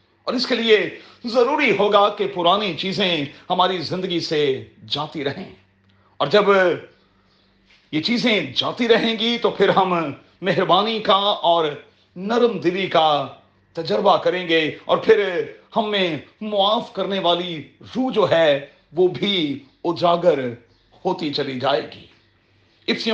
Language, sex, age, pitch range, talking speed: Urdu, male, 40-59, 140-205 Hz, 130 wpm